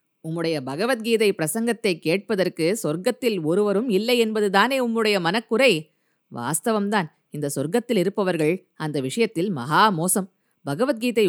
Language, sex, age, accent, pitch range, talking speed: Tamil, female, 20-39, native, 170-230 Hz, 100 wpm